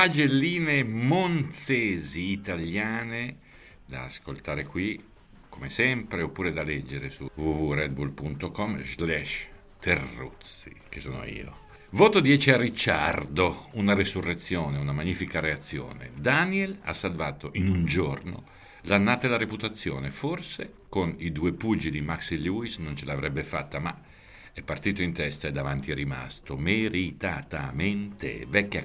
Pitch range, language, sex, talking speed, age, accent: 75-105 Hz, Italian, male, 125 wpm, 50-69, native